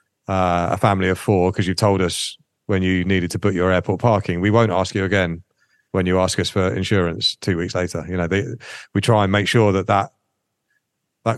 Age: 30-49